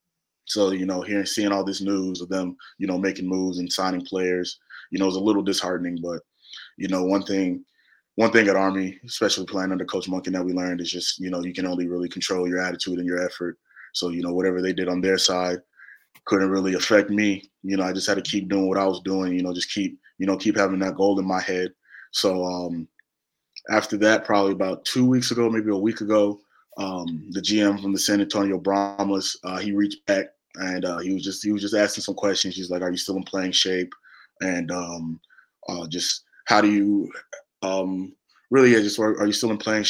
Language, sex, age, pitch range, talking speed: English, male, 20-39, 90-100 Hz, 230 wpm